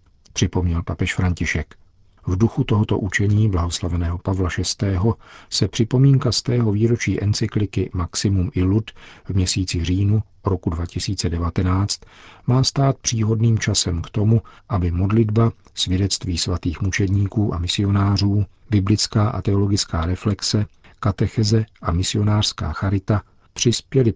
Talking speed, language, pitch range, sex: 115 wpm, Czech, 90-110 Hz, male